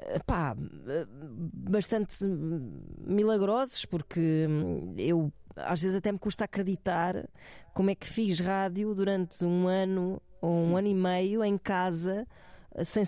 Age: 20-39